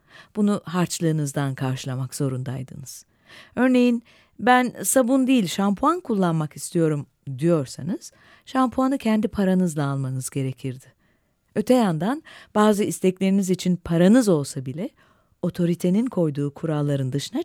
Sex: female